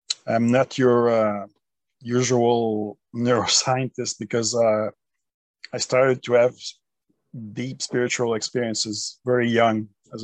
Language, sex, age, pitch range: English, male, 40-59, 110-125 Hz